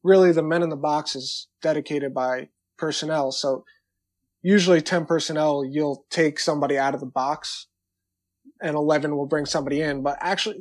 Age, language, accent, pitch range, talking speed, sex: 20-39, English, American, 135-165 Hz, 165 wpm, male